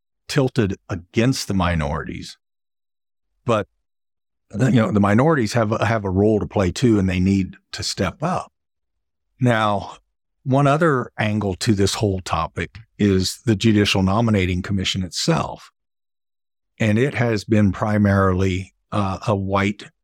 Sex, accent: male, American